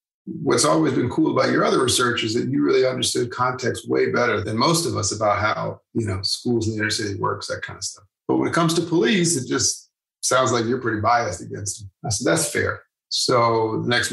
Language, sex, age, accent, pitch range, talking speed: English, male, 30-49, American, 105-125 Hz, 240 wpm